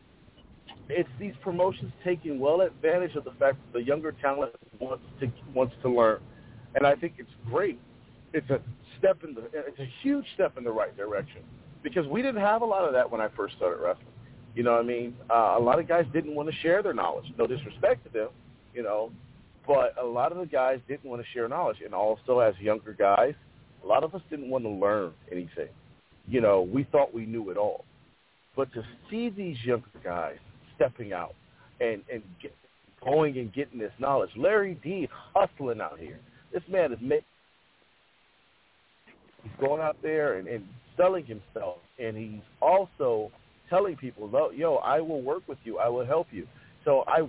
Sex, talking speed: male, 195 wpm